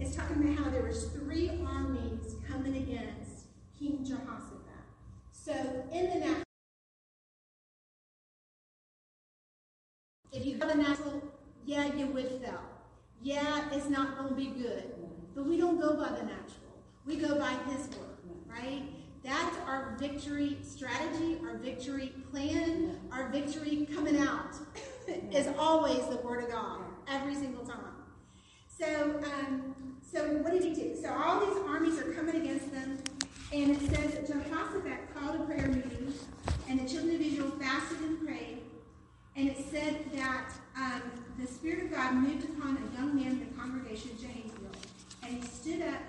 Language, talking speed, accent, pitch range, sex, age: English, 155 wpm, American, 260-305 Hz, female, 40-59